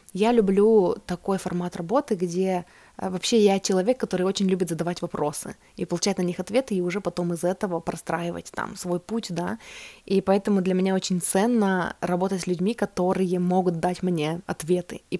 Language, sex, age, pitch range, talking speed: Russian, female, 20-39, 175-205 Hz, 175 wpm